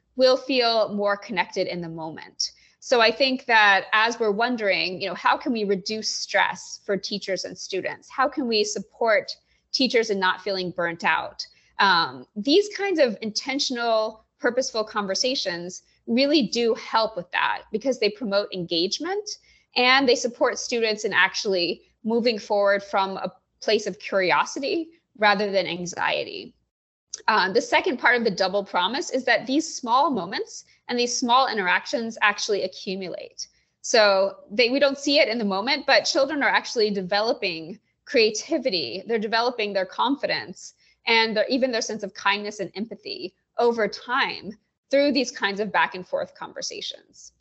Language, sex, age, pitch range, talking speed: English, female, 20-39, 195-260 Hz, 155 wpm